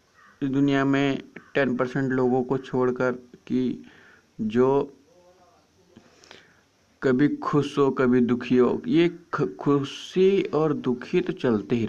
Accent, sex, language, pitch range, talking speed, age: native, male, Hindi, 125-170 Hz, 115 wpm, 50-69